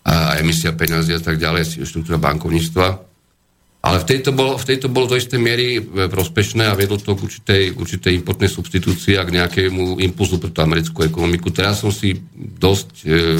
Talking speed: 180 wpm